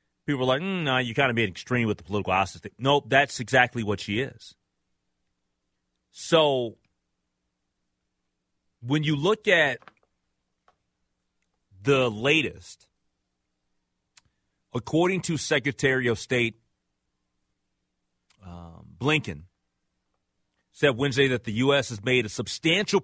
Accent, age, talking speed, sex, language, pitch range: American, 30-49, 115 wpm, male, English, 85-130 Hz